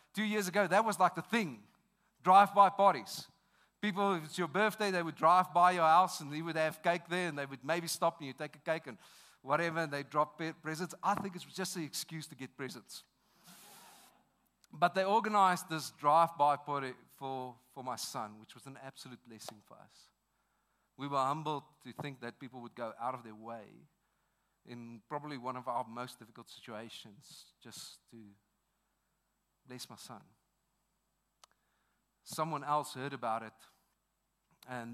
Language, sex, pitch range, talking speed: English, male, 130-170 Hz, 175 wpm